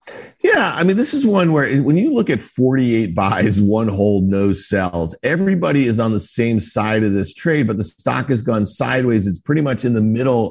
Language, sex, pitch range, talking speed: English, male, 110-135 Hz, 215 wpm